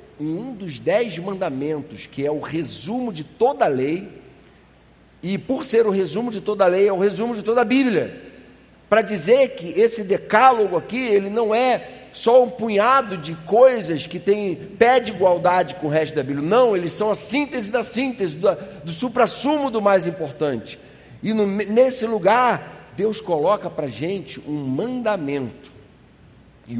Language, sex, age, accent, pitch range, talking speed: Portuguese, male, 50-69, Brazilian, 145-210 Hz, 170 wpm